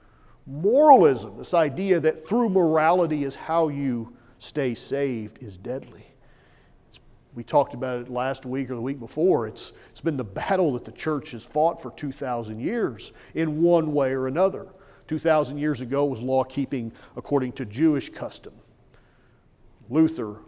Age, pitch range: 40-59, 125-160 Hz